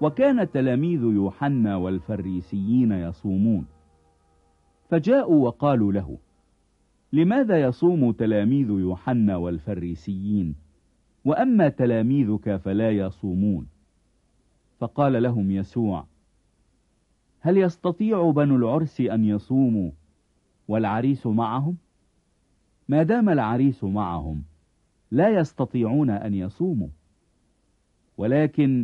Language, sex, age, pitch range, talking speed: English, male, 50-69, 95-140 Hz, 75 wpm